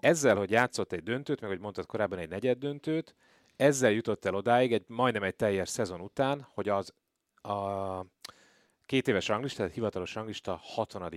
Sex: male